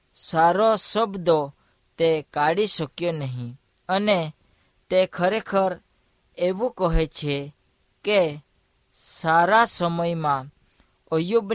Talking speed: 85 wpm